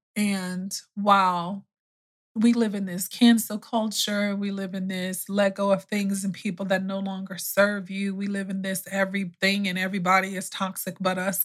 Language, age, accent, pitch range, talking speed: English, 20-39, American, 185-210 Hz, 180 wpm